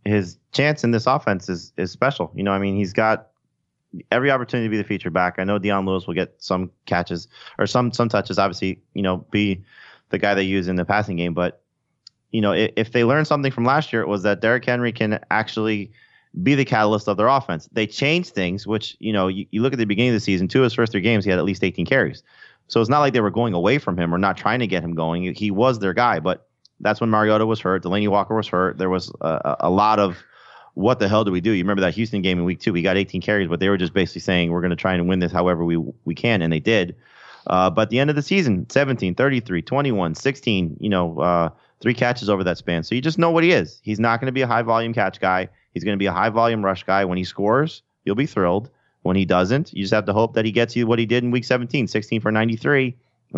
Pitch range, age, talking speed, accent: 95-120 Hz, 30-49, 270 wpm, American